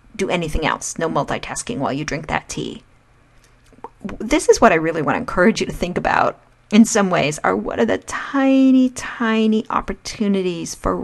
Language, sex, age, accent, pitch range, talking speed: English, female, 40-59, American, 165-220 Hz, 180 wpm